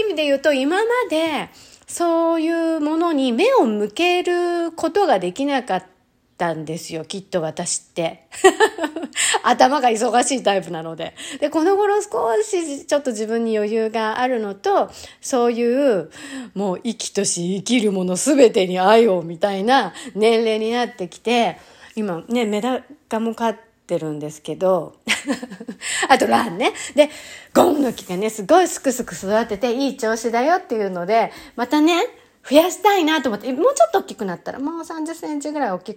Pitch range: 200-300 Hz